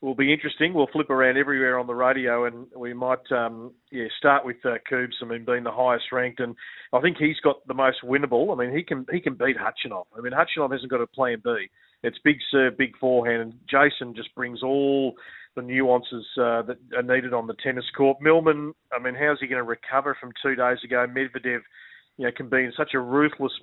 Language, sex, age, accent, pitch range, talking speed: English, male, 40-59, Australian, 125-145 Hz, 230 wpm